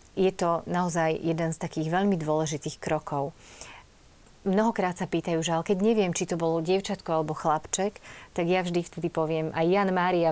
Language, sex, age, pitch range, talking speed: Slovak, female, 30-49, 150-175 Hz, 170 wpm